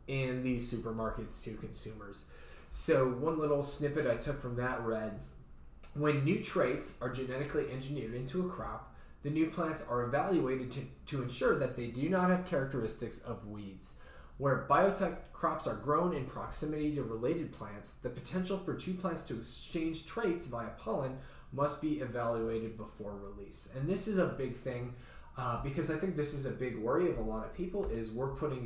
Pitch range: 115-150 Hz